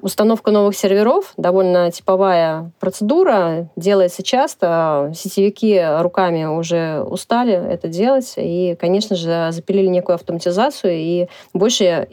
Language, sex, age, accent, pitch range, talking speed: Russian, female, 30-49, native, 170-205 Hz, 110 wpm